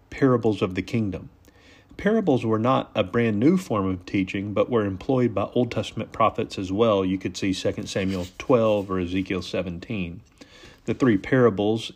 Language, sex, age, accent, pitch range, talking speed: English, male, 40-59, American, 95-115 Hz, 170 wpm